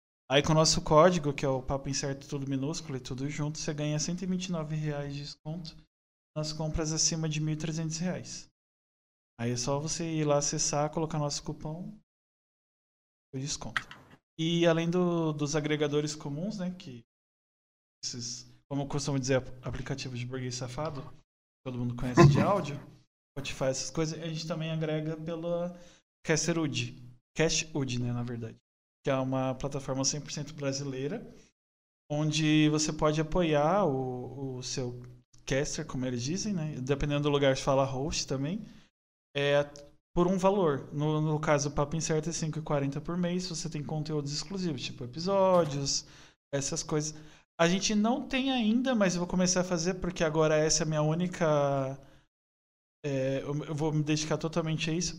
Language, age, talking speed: Portuguese, 20-39, 160 wpm